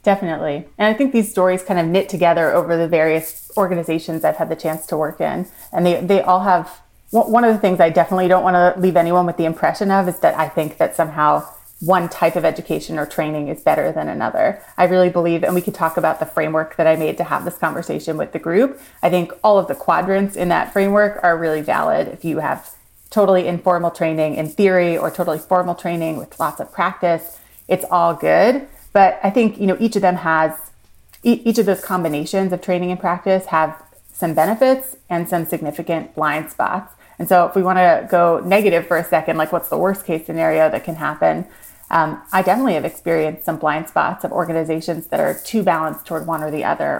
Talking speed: 220 wpm